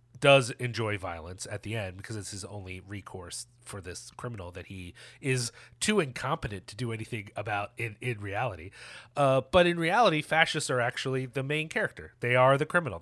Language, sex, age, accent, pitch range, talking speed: English, male, 30-49, American, 115-145 Hz, 185 wpm